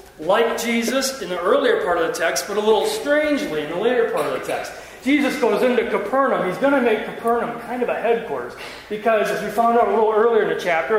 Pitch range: 210-260 Hz